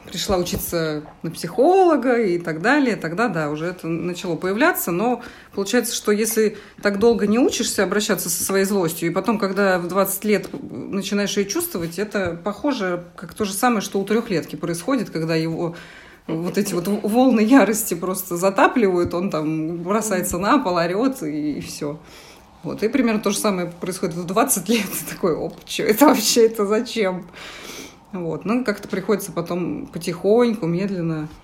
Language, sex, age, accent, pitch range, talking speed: Russian, female, 30-49, native, 175-230 Hz, 165 wpm